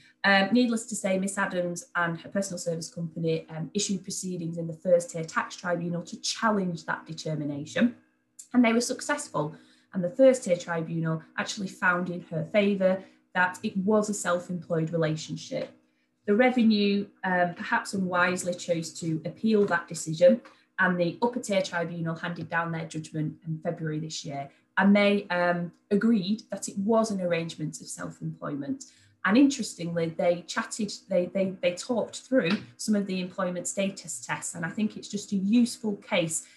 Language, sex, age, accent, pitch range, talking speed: English, female, 30-49, British, 170-210 Hz, 160 wpm